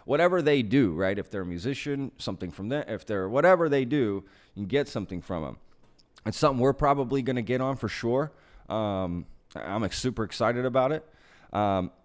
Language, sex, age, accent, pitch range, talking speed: English, male, 30-49, American, 95-125 Hz, 190 wpm